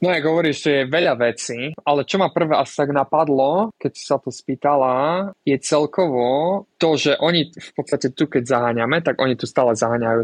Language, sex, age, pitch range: Slovak, male, 20-39, 120-140 Hz